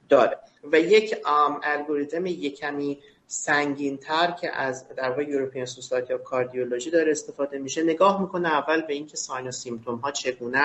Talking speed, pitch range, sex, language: 145 wpm, 140-170 Hz, male, Persian